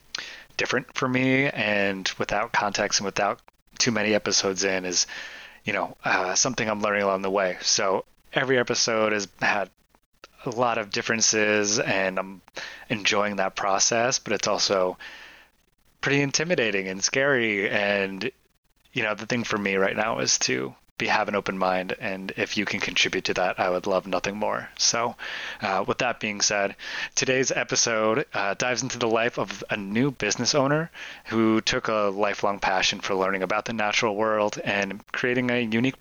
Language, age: English, 30-49